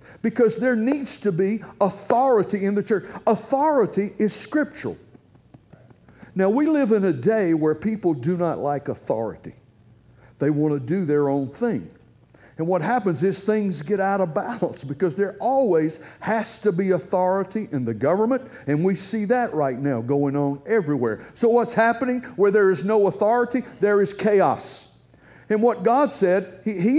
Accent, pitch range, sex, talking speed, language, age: American, 160-225 Hz, male, 170 wpm, English, 60-79